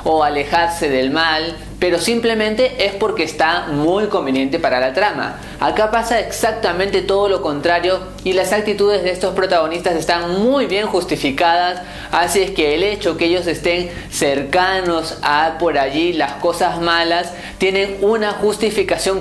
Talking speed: 150 wpm